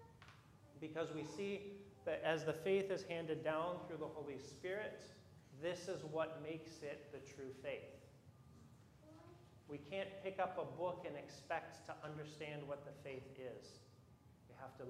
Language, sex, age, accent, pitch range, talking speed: English, male, 30-49, American, 140-175 Hz, 155 wpm